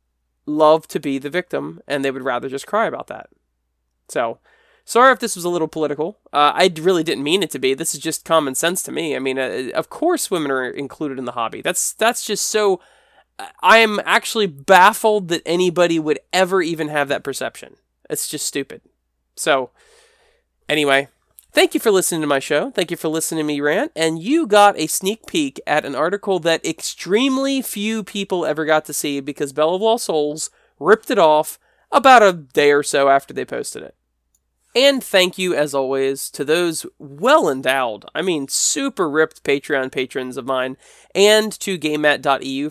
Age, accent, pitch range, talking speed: 20-39, American, 145-210 Hz, 185 wpm